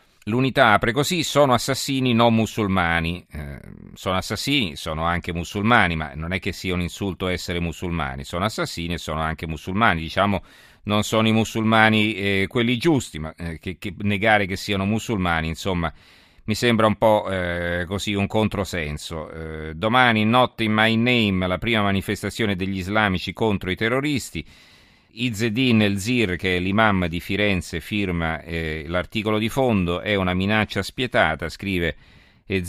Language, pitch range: Italian, 90-110 Hz